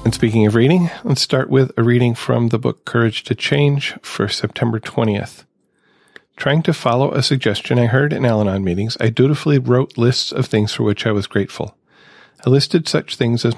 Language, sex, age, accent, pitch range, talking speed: English, male, 40-59, American, 110-135 Hz, 195 wpm